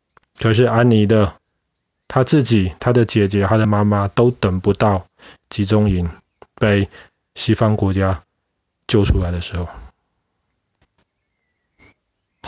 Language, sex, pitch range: Chinese, male, 100-125 Hz